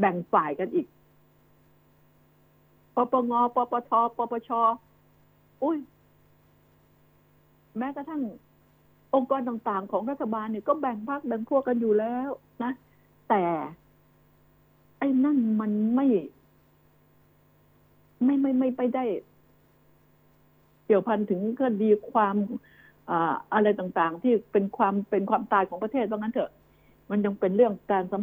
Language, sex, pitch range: Thai, female, 200-245 Hz